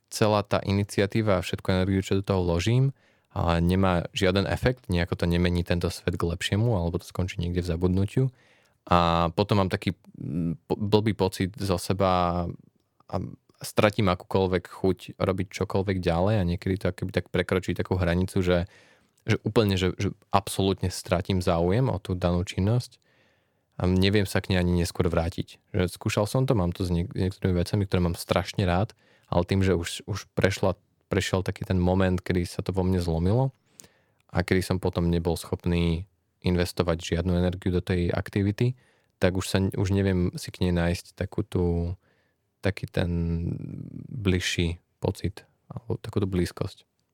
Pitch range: 90-105 Hz